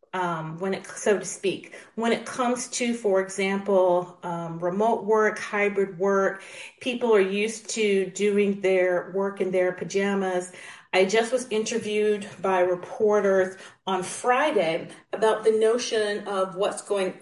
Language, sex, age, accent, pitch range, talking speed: English, female, 40-59, American, 185-230 Hz, 145 wpm